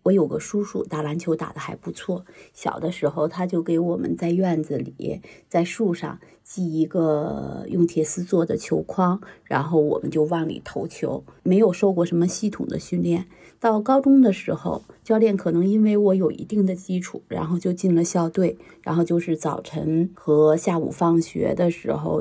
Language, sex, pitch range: Chinese, female, 170-215 Hz